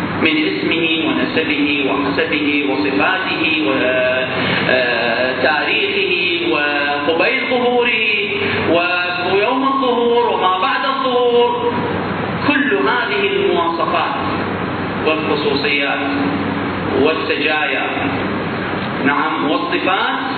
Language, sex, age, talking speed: Arabic, male, 40-59, 60 wpm